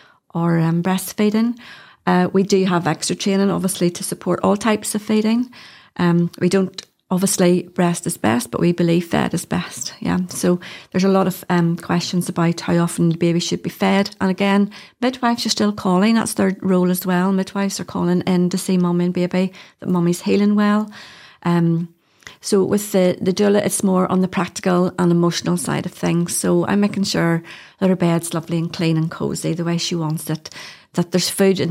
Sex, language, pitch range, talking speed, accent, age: female, English, 170-195 Hz, 200 wpm, British, 30-49